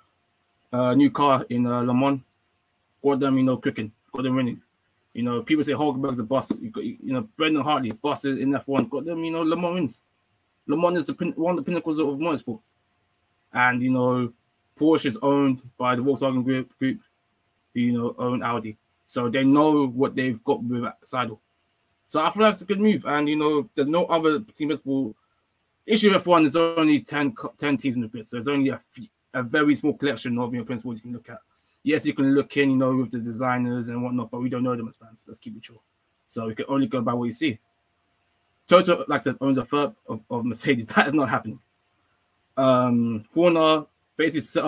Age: 20-39